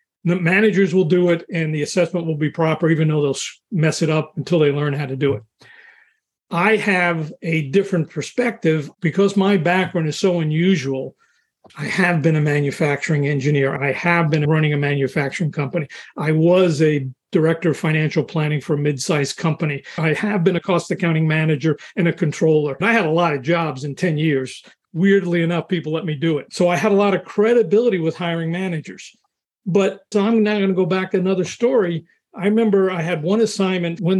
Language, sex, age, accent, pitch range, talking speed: English, male, 40-59, American, 155-185 Hz, 200 wpm